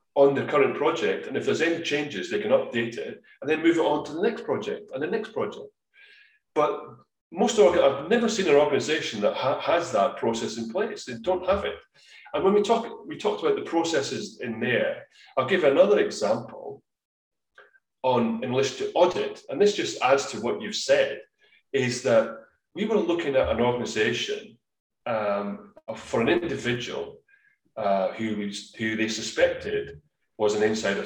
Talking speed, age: 180 wpm, 30-49